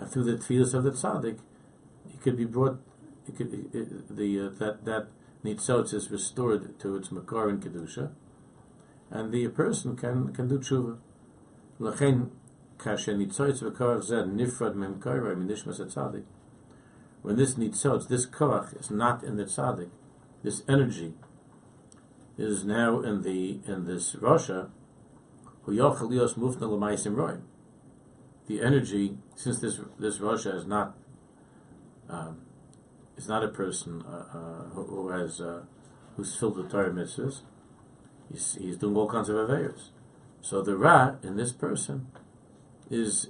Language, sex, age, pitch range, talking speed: English, male, 60-79, 105-130 Hz, 135 wpm